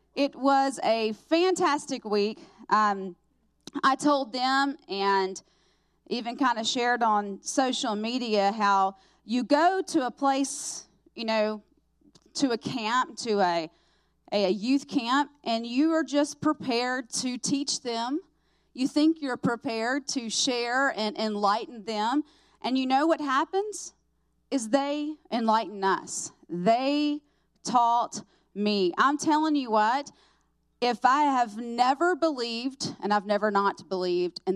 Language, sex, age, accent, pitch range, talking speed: English, female, 30-49, American, 200-270 Hz, 135 wpm